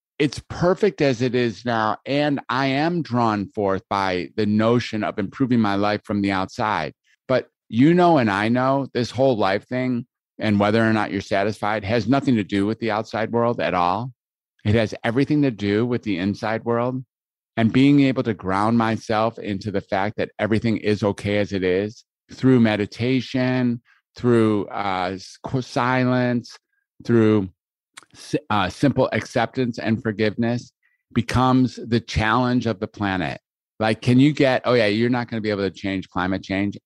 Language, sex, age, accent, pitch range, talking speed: English, male, 50-69, American, 95-120 Hz, 170 wpm